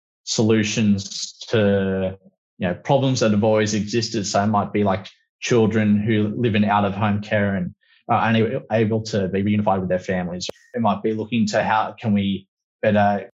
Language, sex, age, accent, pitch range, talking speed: English, male, 20-39, Australian, 100-115 Hz, 175 wpm